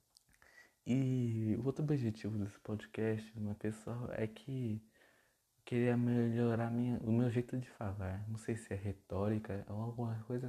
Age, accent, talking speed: 20-39, Brazilian, 145 wpm